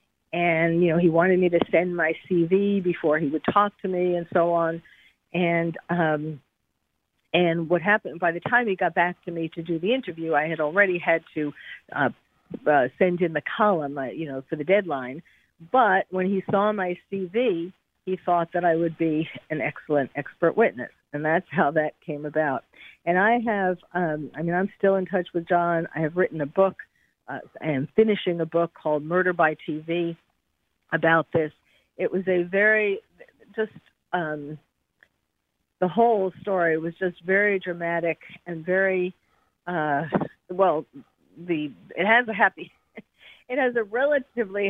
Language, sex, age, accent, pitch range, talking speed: English, female, 50-69, American, 165-195 Hz, 175 wpm